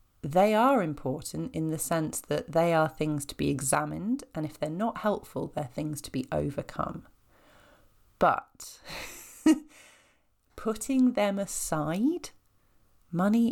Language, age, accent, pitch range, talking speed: English, 40-59, British, 150-230 Hz, 125 wpm